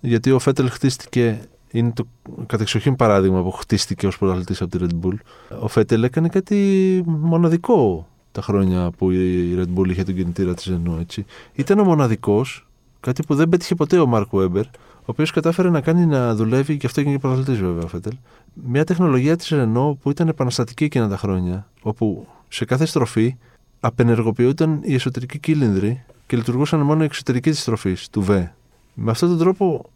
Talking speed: 175 wpm